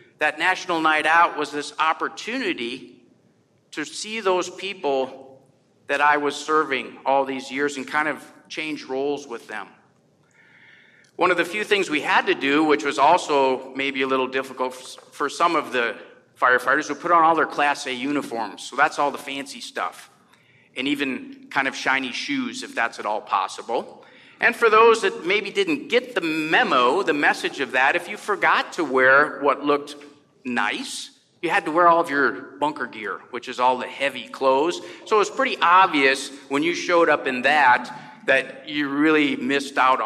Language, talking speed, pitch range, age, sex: English, 185 wpm, 140-210 Hz, 50-69, male